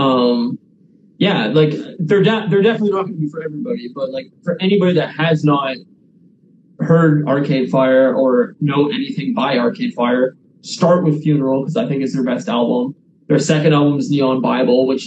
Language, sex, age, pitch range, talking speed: English, male, 20-39, 130-165 Hz, 185 wpm